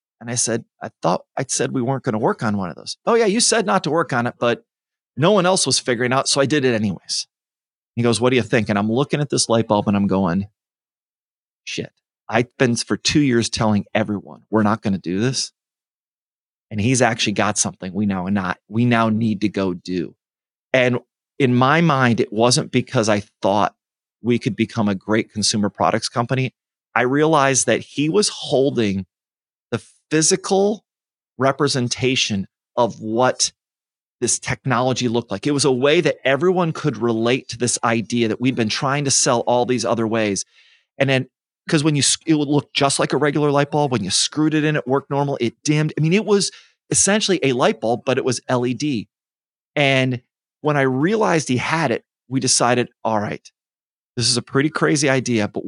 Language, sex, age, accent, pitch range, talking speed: English, male, 30-49, American, 110-140 Hz, 205 wpm